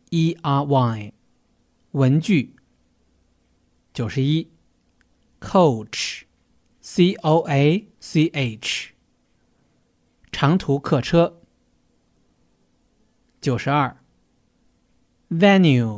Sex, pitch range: male, 105-170 Hz